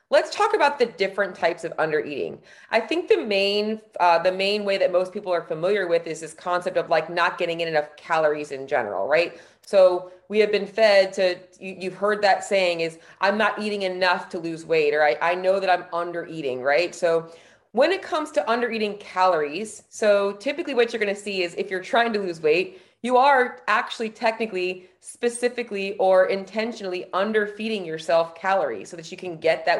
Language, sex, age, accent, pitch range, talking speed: English, female, 30-49, American, 170-215 Hz, 200 wpm